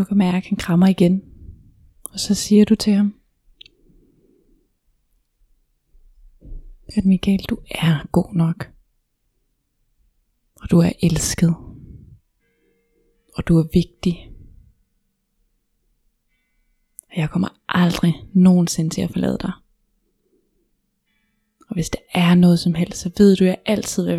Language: Danish